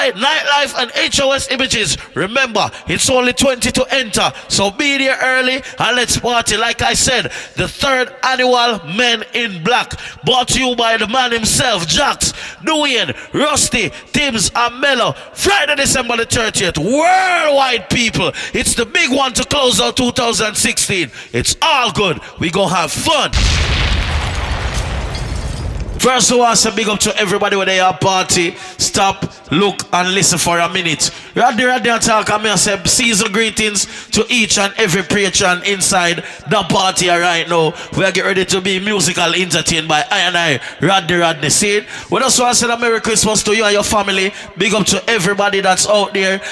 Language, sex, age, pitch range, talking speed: English, male, 30-49, 185-240 Hz, 170 wpm